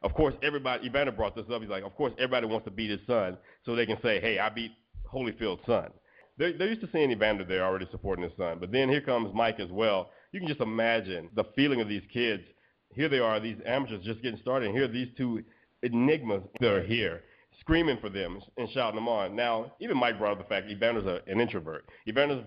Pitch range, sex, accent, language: 105-130 Hz, male, American, English